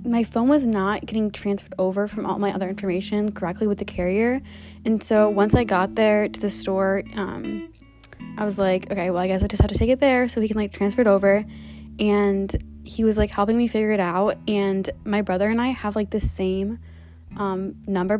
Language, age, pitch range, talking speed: English, 20-39, 185-220 Hz, 220 wpm